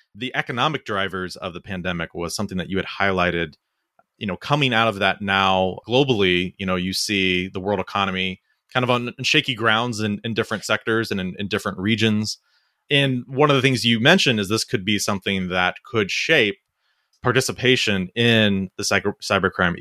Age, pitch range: 30-49, 95-115 Hz